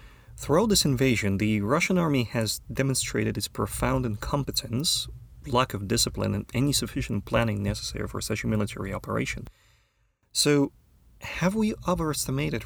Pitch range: 105-135 Hz